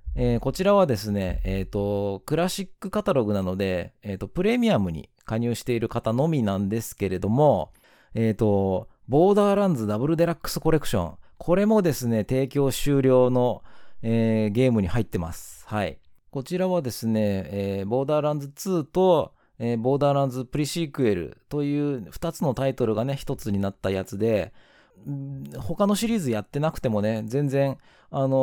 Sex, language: male, Japanese